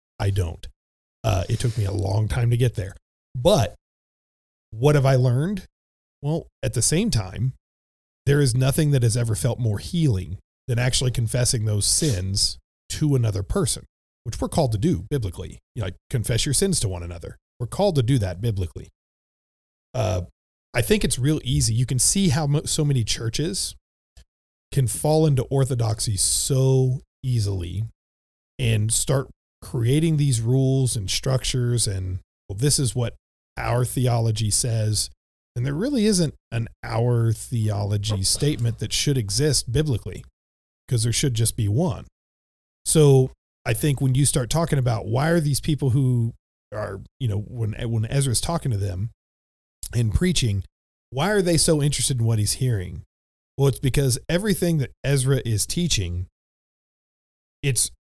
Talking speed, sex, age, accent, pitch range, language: 160 wpm, male, 40-59, American, 95-135 Hz, English